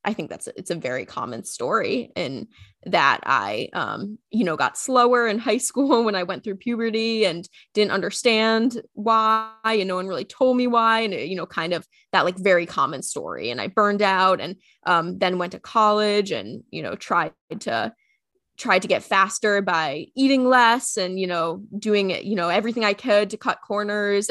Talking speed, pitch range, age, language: 200 wpm, 185-225 Hz, 20-39, English